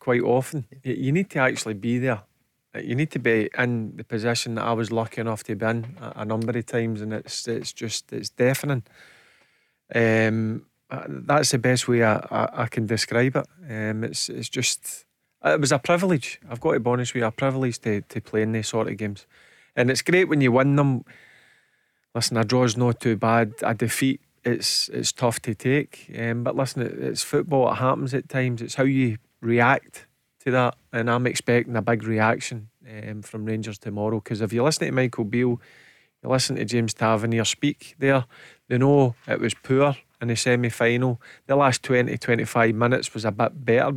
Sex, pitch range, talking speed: male, 115-130 Hz, 205 wpm